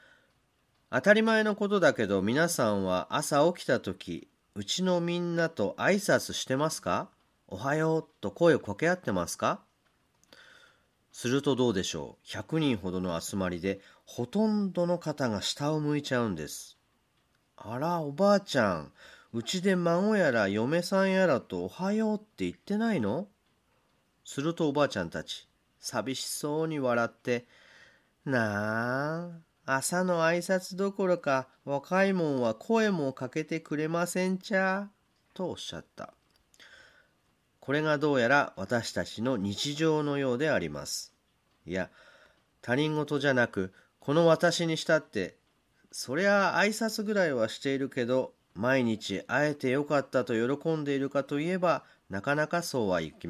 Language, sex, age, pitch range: Japanese, male, 40-59, 120-175 Hz